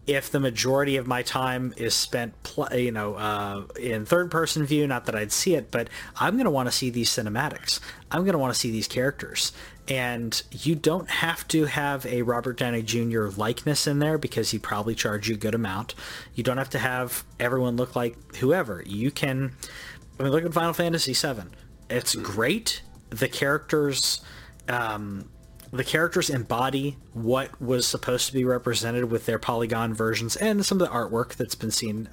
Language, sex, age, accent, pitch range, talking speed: English, male, 30-49, American, 110-135 Hz, 190 wpm